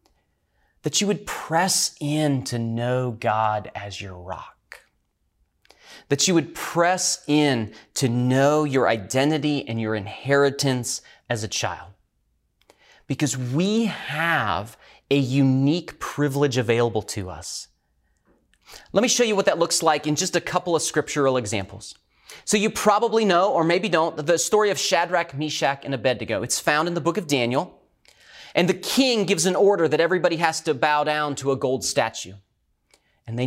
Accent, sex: American, male